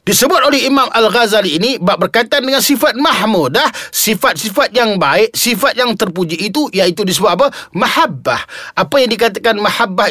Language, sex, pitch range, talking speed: Malay, male, 185-260 Hz, 140 wpm